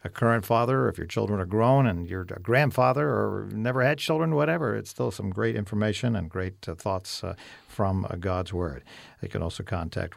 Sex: male